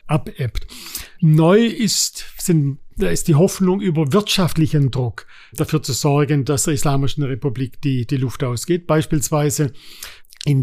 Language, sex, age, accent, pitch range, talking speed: German, male, 50-69, German, 140-170 Hz, 135 wpm